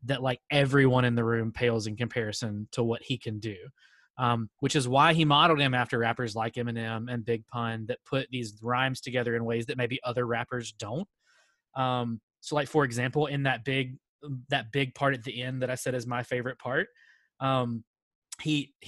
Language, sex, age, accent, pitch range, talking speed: English, male, 20-39, American, 120-140 Hz, 200 wpm